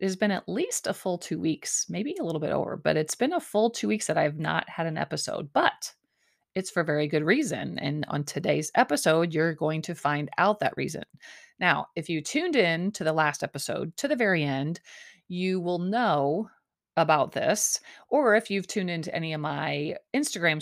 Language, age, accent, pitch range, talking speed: English, 30-49, American, 155-220 Hz, 205 wpm